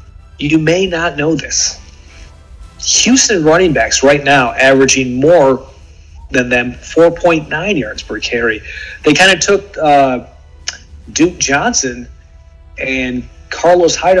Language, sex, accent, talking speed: English, male, American, 115 wpm